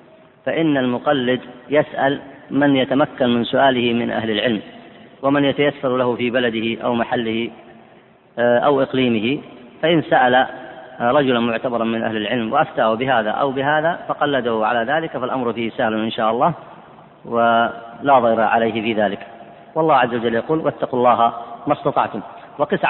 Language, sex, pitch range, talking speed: Arabic, female, 115-140 Hz, 140 wpm